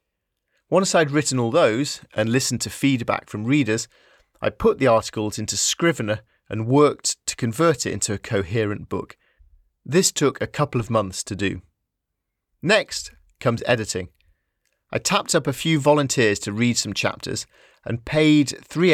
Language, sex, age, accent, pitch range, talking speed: English, male, 30-49, British, 100-135 Hz, 160 wpm